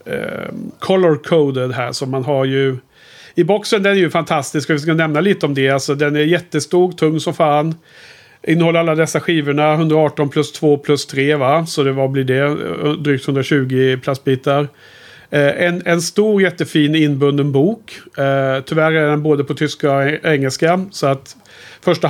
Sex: male